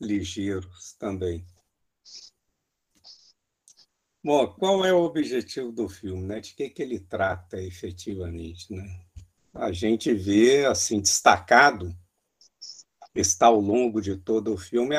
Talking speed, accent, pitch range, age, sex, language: 115 wpm, Brazilian, 95-135 Hz, 60-79, male, Portuguese